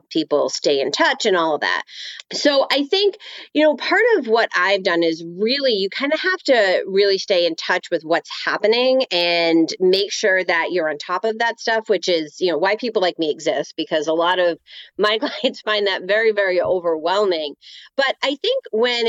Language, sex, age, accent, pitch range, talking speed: English, female, 30-49, American, 175-265 Hz, 205 wpm